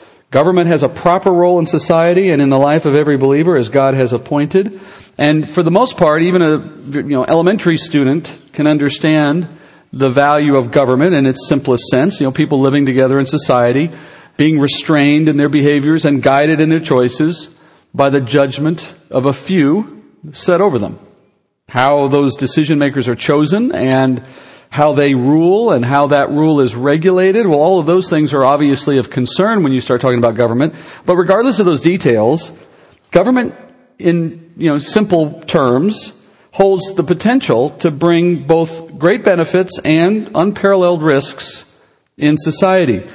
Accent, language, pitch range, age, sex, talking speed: American, English, 140-175 Hz, 40-59, male, 160 wpm